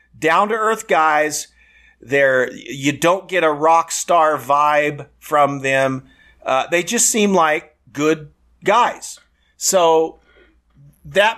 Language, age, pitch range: English, 50-69, 145-190 Hz